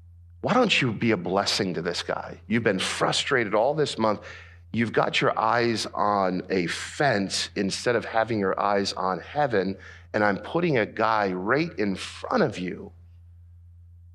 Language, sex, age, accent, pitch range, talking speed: English, male, 50-69, American, 85-100 Hz, 165 wpm